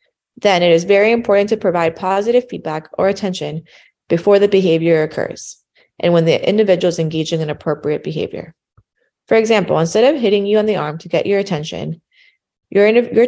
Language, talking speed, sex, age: English, 175 wpm, female, 20-39